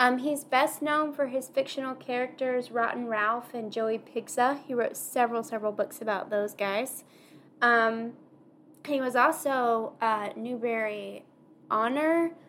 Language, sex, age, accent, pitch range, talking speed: English, female, 10-29, American, 220-270 Hz, 135 wpm